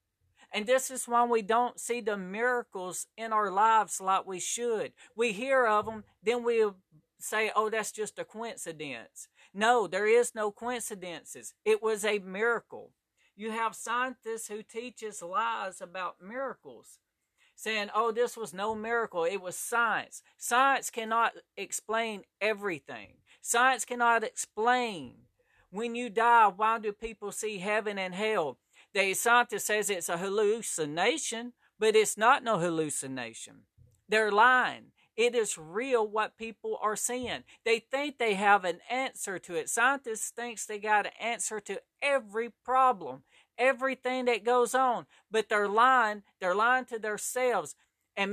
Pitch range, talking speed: 205-245 Hz, 150 wpm